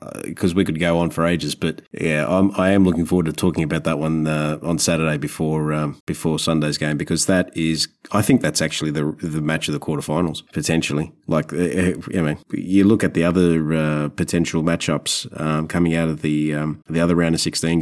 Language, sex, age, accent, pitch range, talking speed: English, male, 30-49, Australian, 80-95 Hz, 215 wpm